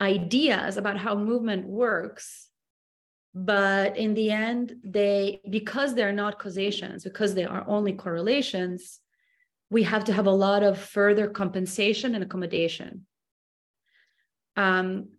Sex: female